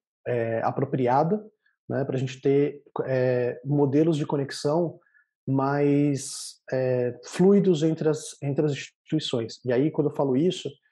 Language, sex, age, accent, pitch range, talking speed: Portuguese, male, 20-39, Brazilian, 130-155 Hz, 135 wpm